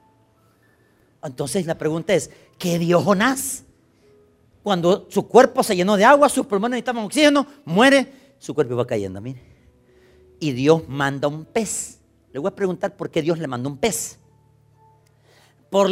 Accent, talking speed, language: Mexican, 155 wpm, Spanish